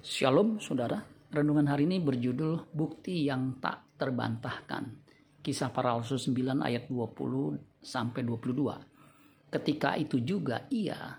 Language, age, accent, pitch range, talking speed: Indonesian, 50-69, native, 125-145 Hz, 100 wpm